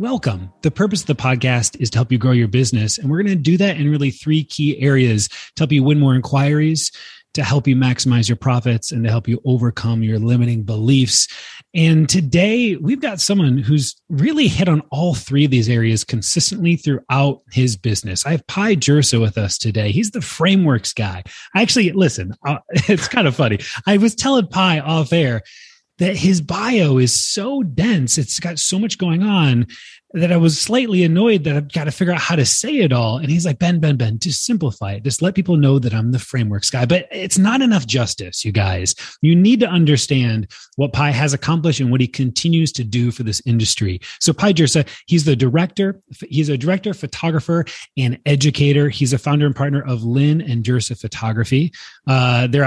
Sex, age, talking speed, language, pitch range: male, 30-49, 205 wpm, English, 120-165 Hz